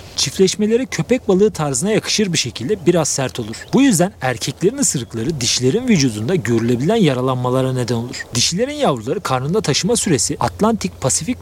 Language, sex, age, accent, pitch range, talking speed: Turkish, male, 40-59, native, 125-200 Hz, 140 wpm